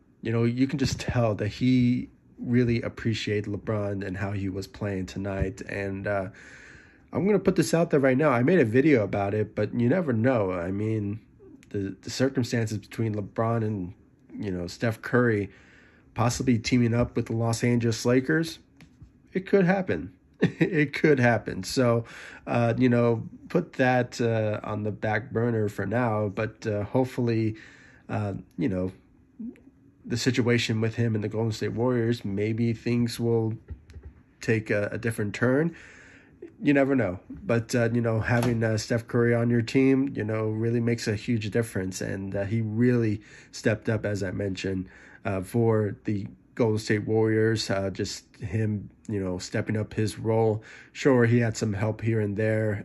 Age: 30-49